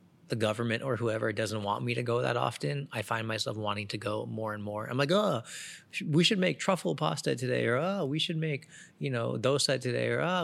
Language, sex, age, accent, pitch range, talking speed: English, male, 30-49, American, 110-140 Hz, 230 wpm